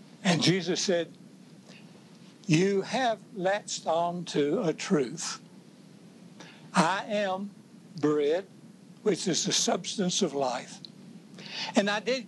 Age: 60-79